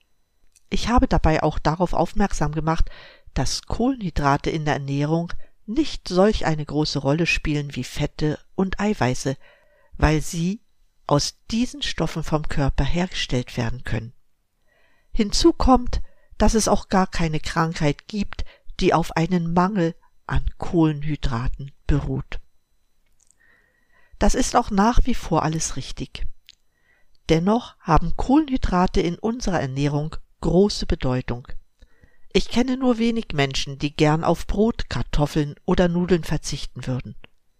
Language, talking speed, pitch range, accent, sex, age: German, 125 wpm, 145-195 Hz, German, female, 50-69